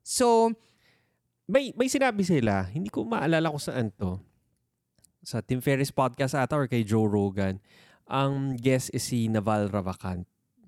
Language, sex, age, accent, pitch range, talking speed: Filipino, male, 20-39, native, 110-145 Hz, 145 wpm